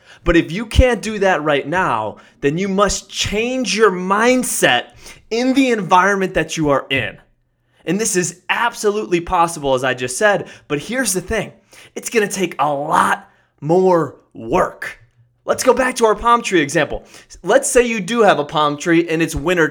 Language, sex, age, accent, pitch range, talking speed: English, male, 20-39, American, 150-210 Hz, 185 wpm